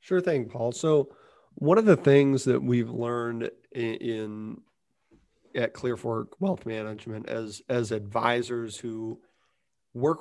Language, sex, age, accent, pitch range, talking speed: English, male, 40-59, American, 110-135 Hz, 130 wpm